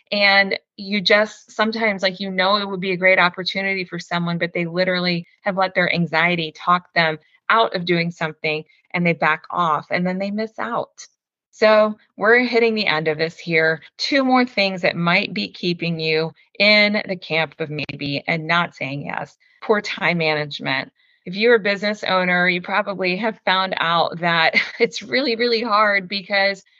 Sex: female